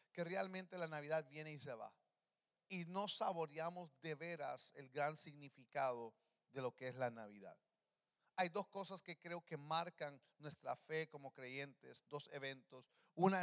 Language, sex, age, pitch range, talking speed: English, male, 40-59, 140-175 Hz, 160 wpm